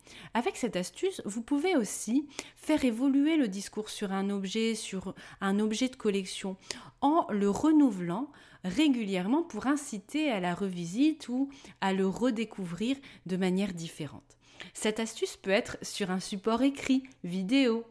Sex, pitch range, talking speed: female, 195-285 Hz, 145 wpm